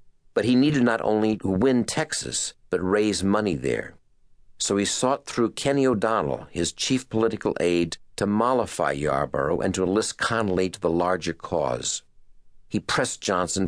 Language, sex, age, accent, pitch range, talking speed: English, male, 60-79, American, 85-110 Hz, 160 wpm